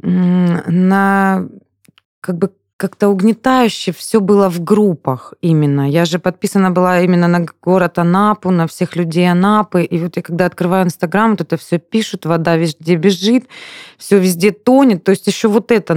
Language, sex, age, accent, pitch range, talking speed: Russian, female, 20-39, native, 165-205 Hz, 160 wpm